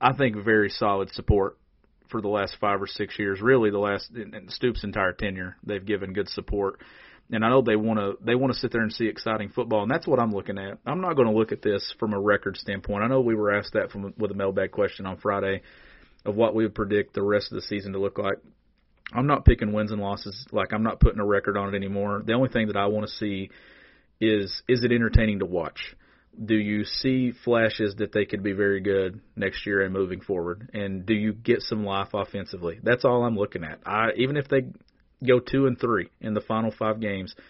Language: English